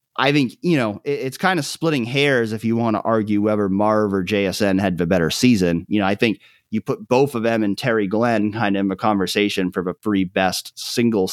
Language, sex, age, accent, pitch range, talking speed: English, male, 30-49, American, 100-125 Hz, 235 wpm